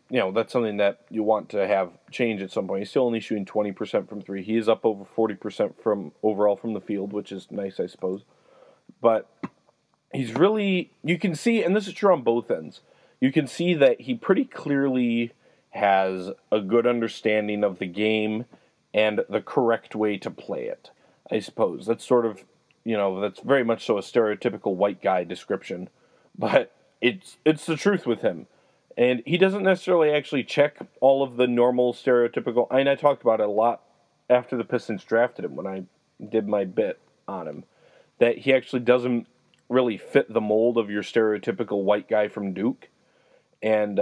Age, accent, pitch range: 30-49, American, 105-125 Hz